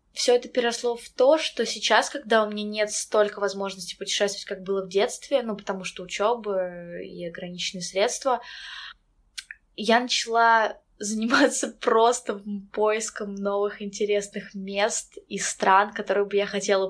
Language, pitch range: Russian, 205-245 Hz